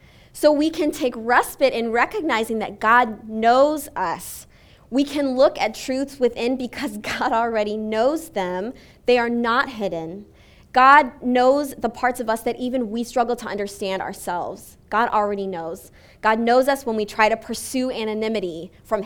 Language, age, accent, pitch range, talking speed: English, 20-39, American, 220-270 Hz, 165 wpm